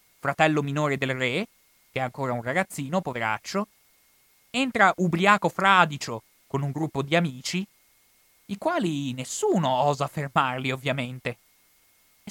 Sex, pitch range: male, 140-190 Hz